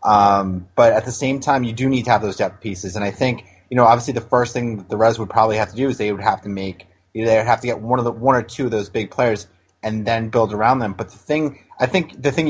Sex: male